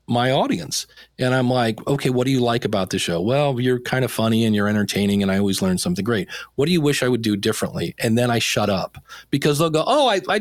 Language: English